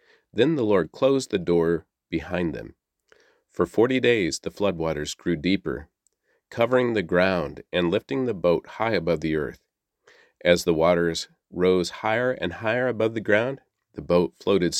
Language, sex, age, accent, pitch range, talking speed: English, male, 40-59, American, 85-115 Hz, 160 wpm